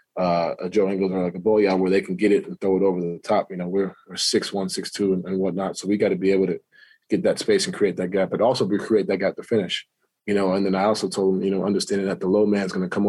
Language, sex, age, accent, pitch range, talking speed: English, male, 20-39, American, 95-110 Hz, 325 wpm